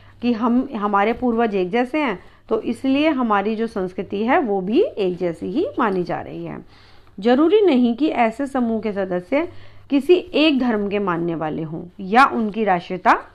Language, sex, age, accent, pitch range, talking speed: Hindi, female, 40-59, native, 195-265 Hz, 175 wpm